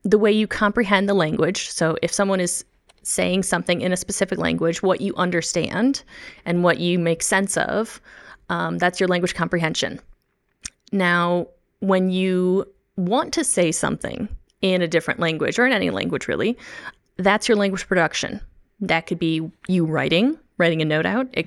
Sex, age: female, 20-39